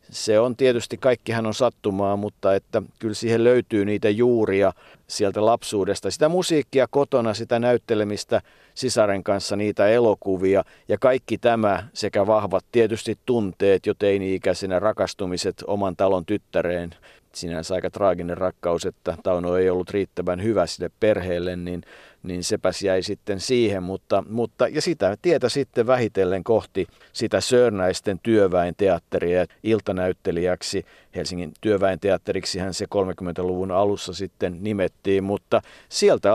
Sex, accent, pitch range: male, native, 95-120 Hz